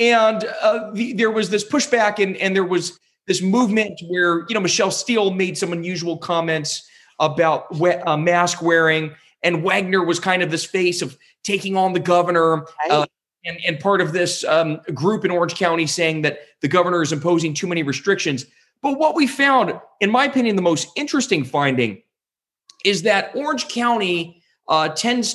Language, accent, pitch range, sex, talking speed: English, American, 155-200 Hz, male, 175 wpm